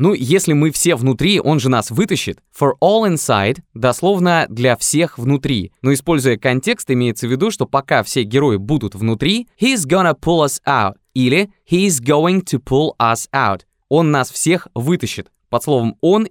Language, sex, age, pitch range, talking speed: Russian, male, 20-39, 115-160 Hz, 175 wpm